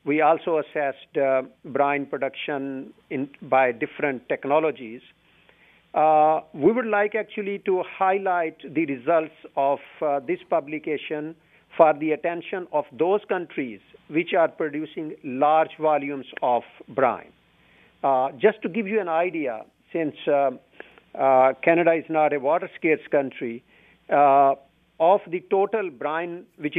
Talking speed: 130 wpm